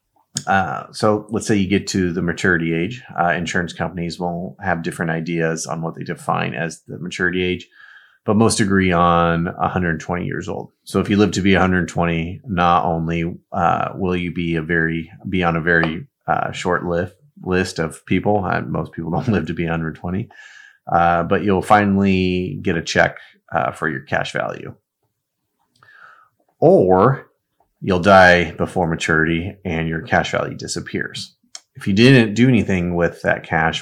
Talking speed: 170 wpm